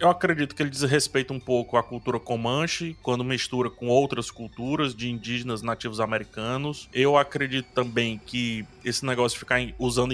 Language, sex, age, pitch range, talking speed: Portuguese, male, 20-39, 125-160 Hz, 165 wpm